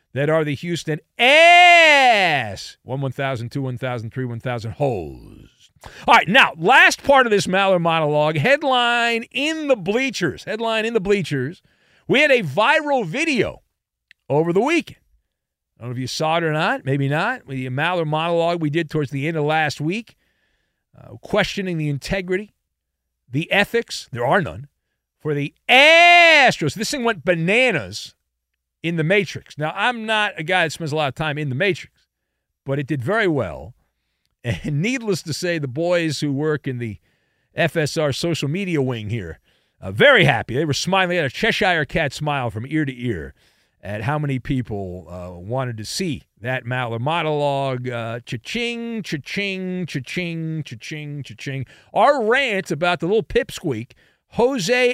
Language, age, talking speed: English, 50-69, 165 wpm